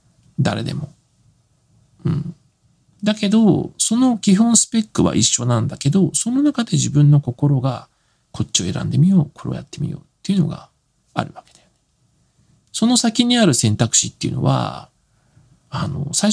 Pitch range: 130-185 Hz